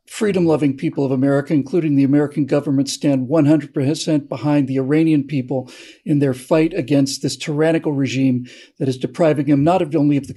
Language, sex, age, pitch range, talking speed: English, male, 50-69, 140-170 Hz, 170 wpm